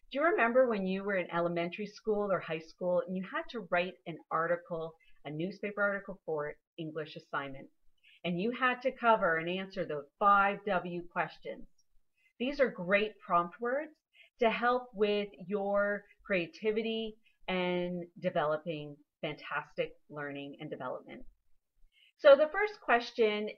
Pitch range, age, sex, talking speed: 175-250 Hz, 40-59, female, 145 wpm